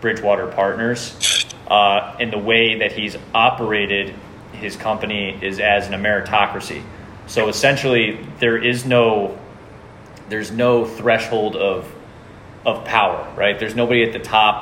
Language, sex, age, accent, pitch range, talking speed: English, male, 20-39, American, 100-120 Hz, 130 wpm